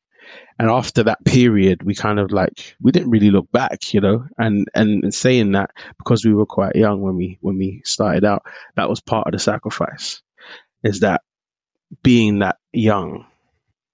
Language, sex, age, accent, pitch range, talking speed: English, male, 20-39, British, 95-110 Hz, 175 wpm